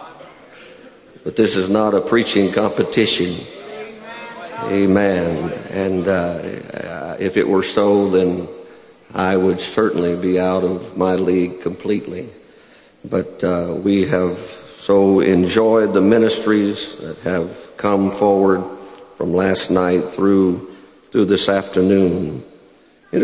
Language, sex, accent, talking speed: English, male, American, 115 wpm